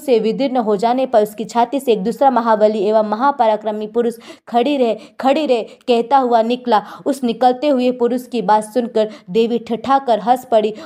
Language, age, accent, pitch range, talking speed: Hindi, 20-39, native, 225-260 Hz, 175 wpm